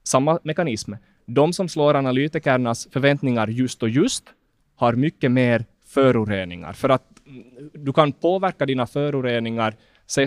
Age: 20-39